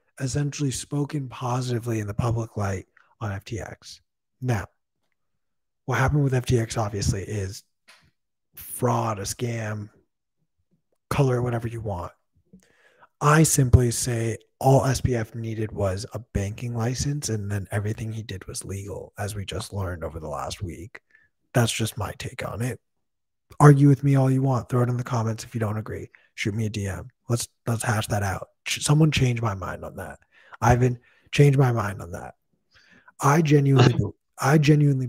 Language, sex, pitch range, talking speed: English, male, 105-130 Hz, 160 wpm